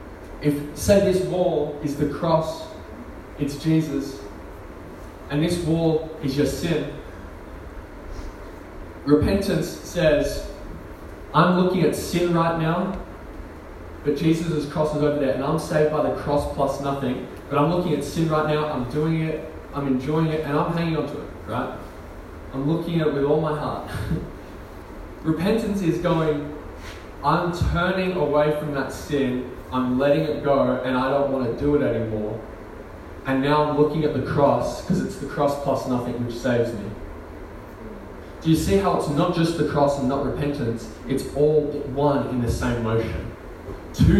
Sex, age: male, 20-39